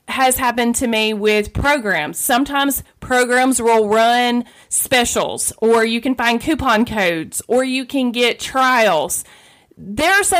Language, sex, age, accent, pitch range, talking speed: English, female, 30-49, American, 195-250 Hz, 145 wpm